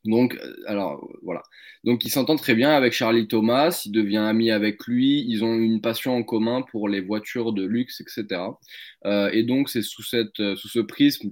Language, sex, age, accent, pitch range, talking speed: French, male, 20-39, French, 100-120 Hz, 195 wpm